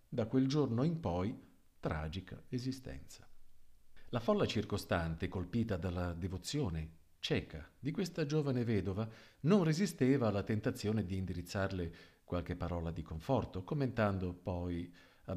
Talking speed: 120 wpm